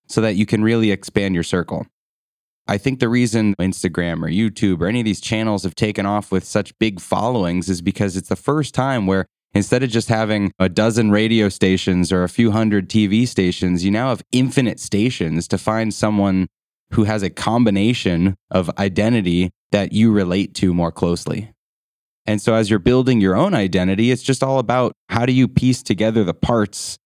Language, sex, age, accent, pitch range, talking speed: English, male, 20-39, American, 95-120 Hz, 195 wpm